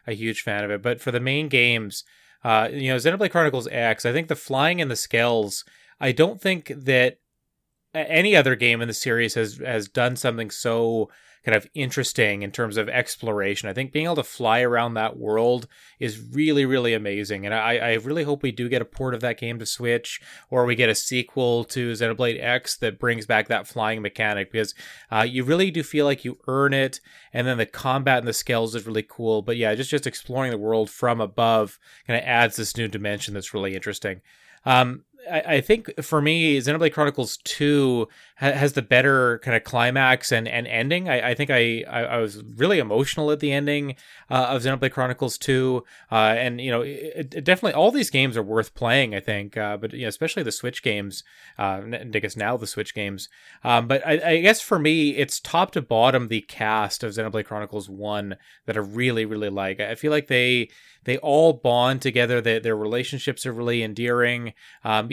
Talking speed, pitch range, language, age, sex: 210 wpm, 110-140 Hz, English, 30-49, male